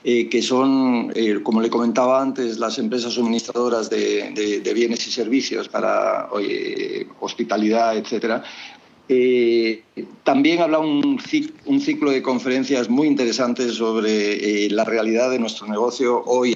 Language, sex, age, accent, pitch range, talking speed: English, male, 50-69, Spanish, 120-140 Hz, 140 wpm